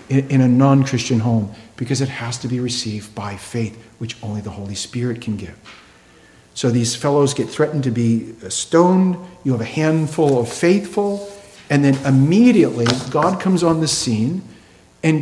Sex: male